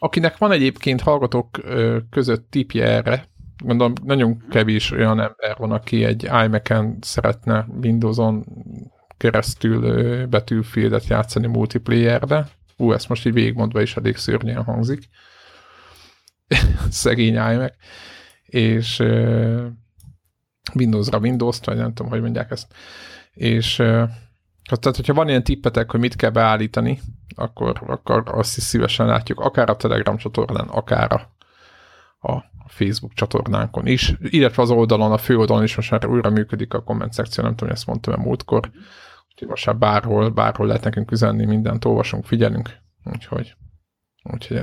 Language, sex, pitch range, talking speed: Hungarian, male, 110-125 Hz, 140 wpm